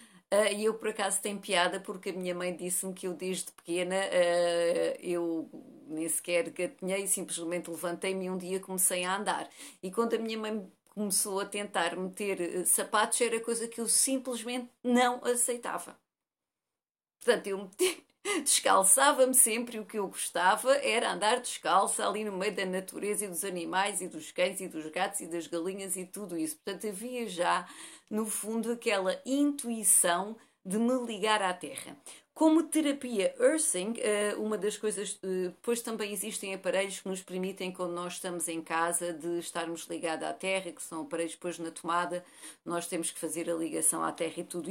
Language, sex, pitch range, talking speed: Portuguese, female, 175-215 Hz, 175 wpm